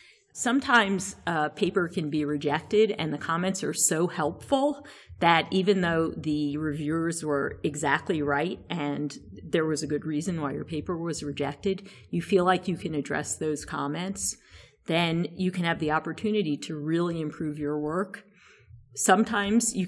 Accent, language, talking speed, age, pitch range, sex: American, English, 155 wpm, 40-59, 150-185 Hz, female